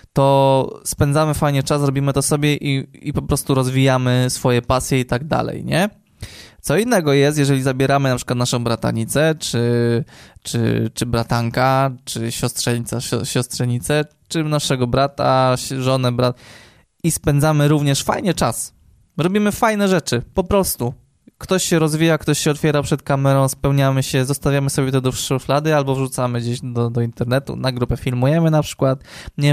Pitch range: 125-150 Hz